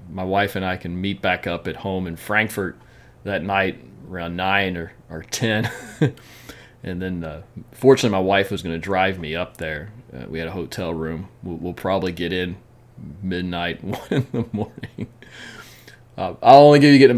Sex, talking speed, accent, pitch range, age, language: male, 185 wpm, American, 85-115 Hz, 30-49, English